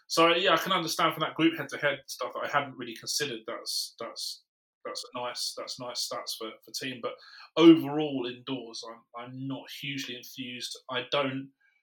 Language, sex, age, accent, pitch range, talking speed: English, male, 30-49, British, 120-145 Hz, 185 wpm